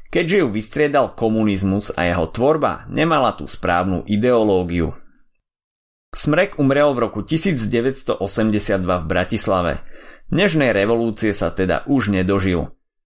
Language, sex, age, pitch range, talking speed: Slovak, male, 30-49, 95-130 Hz, 110 wpm